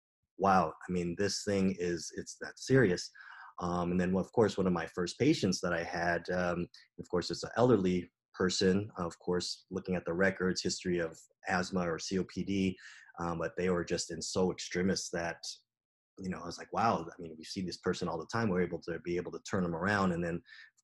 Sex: male